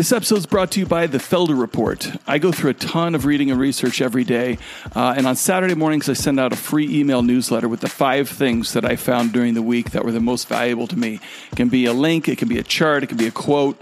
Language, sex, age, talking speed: English, male, 40-59, 280 wpm